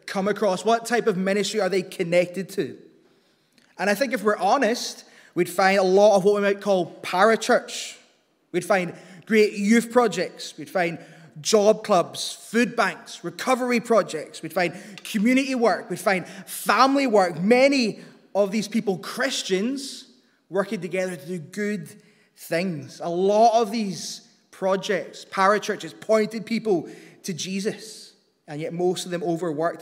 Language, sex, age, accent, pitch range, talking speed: English, male, 20-39, British, 180-225 Hz, 150 wpm